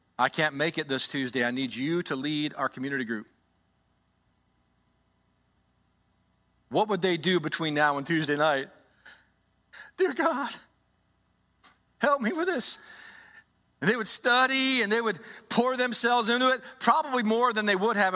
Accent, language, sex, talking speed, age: American, English, male, 150 wpm, 40-59